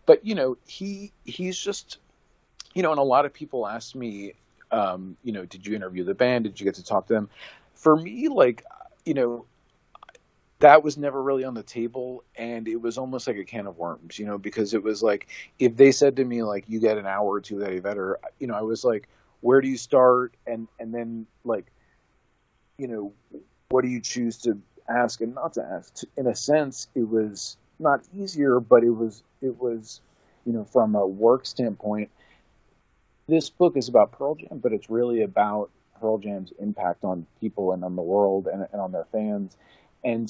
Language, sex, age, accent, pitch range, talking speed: English, male, 40-59, American, 105-130 Hz, 210 wpm